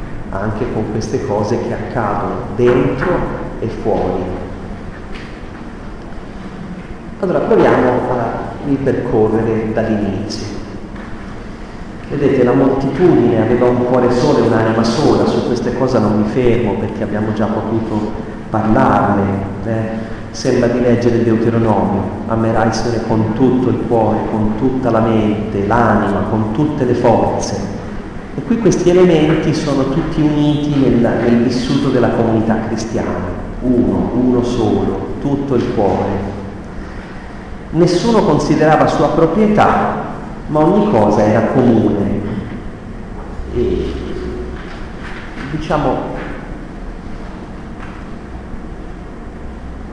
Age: 40-59